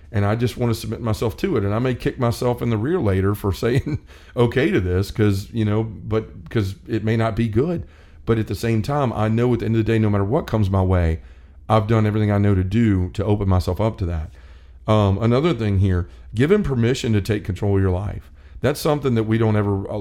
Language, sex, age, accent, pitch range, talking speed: English, male, 40-59, American, 95-115 Hz, 255 wpm